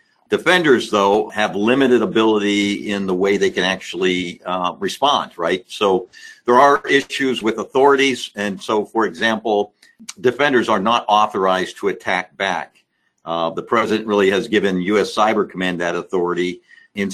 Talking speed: 150 wpm